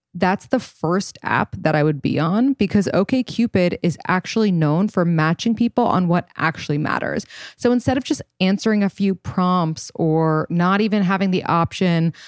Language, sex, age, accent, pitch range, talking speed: English, female, 20-39, American, 160-210 Hz, 170 wpm